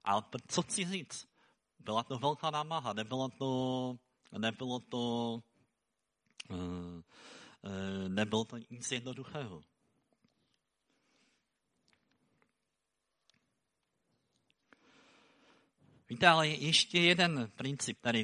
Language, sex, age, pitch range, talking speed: Czech, male, 50-69, 110-145 Hz, 70 wpm